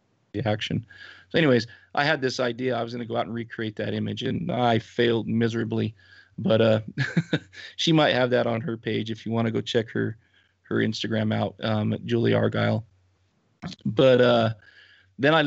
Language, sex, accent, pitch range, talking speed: English, male, American, 110-120 Hz, 180 wpm